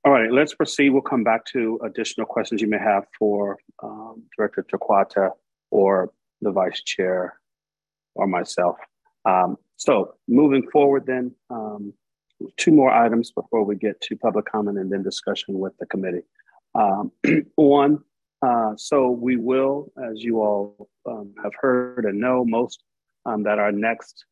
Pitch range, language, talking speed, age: 100-115 Hz, English, 155 wpm, 40-59